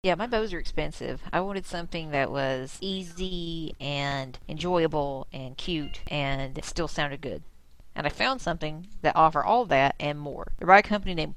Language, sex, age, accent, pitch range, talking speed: English, female, 40-59, American, 150-175 Hz, 180 wpm